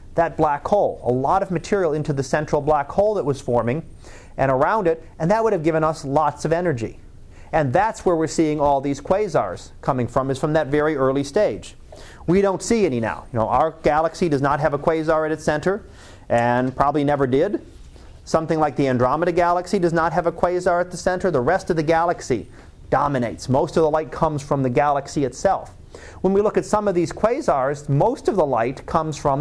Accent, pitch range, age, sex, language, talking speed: American, 140-185 Hz, 30-49, male, English, 215 wpm